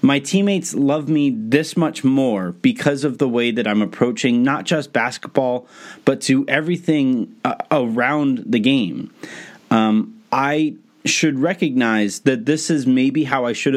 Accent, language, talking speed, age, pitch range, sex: American, English, 155 wpm, 30-49, 115-170 Hz, male